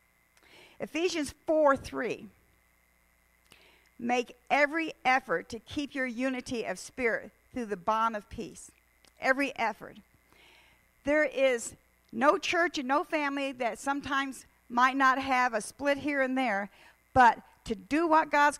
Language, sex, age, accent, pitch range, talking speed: English, female, 50-69, American, 225-290 Hz, 130 wpm